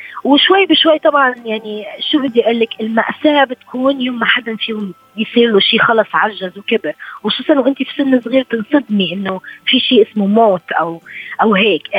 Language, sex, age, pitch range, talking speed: Arabic, female, 20-39, 220-275 Hz, 170 wpm